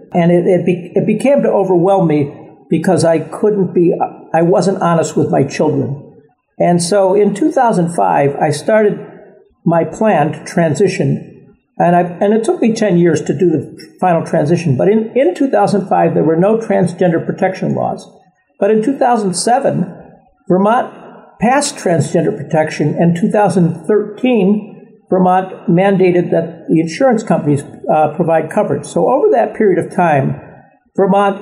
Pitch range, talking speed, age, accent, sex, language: 165-205 Hz, 145 wpm, 60-79, American, male, English